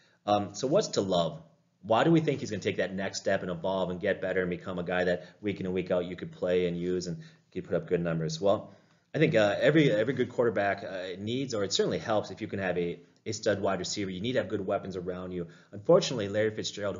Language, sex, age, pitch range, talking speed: English, male, 30-49, 95-125 Hz, 265 wpm